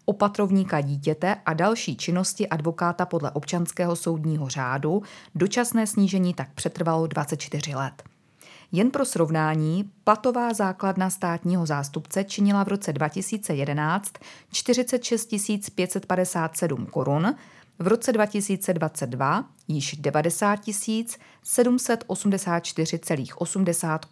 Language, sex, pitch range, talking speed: Czech, female, 160-200 Hz, 90 wpm